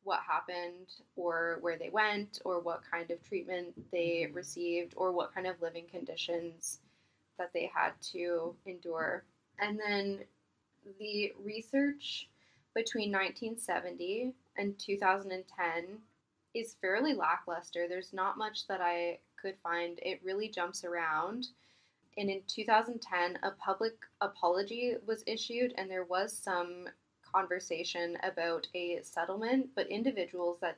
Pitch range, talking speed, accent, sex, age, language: 170-205 Hz, 125 wpm, American, female, 10-29, English